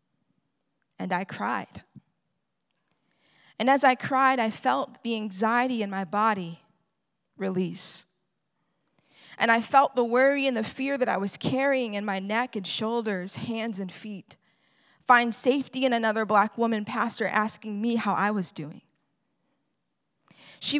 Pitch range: 205-255 Hz